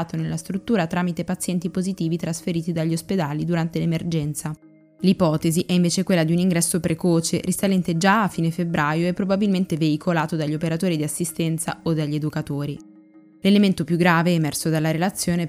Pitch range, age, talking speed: 160-185 Hz, 10-29, 150 wpm